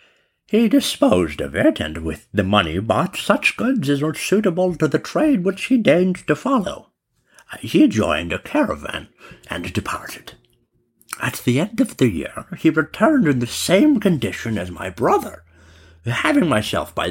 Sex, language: male, English